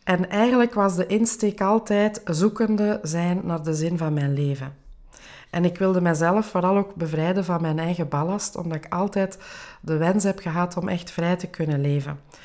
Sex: female